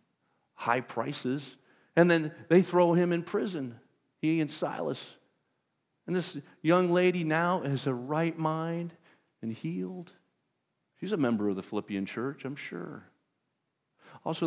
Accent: American